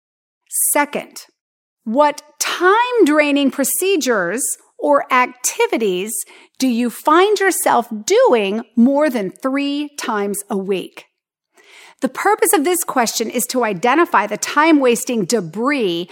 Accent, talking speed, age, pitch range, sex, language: American, 105 wpm, 40-59, 235-335 Hz, female, English